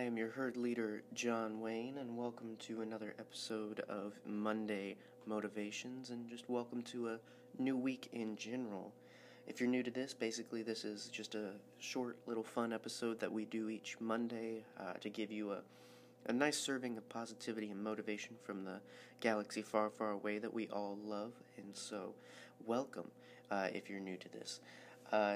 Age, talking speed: 30-49, 175 wpm